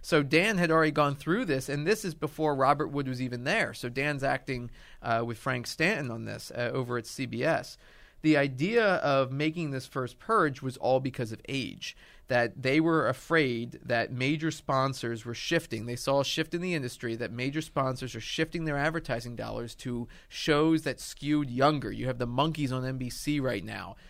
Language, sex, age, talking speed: English, male, 30-49, 195 wpm